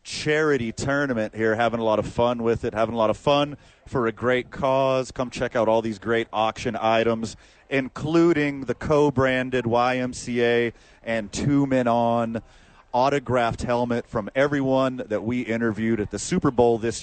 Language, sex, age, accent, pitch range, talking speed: English, male, 30-49, American, 110-130 Hz, 165 wpm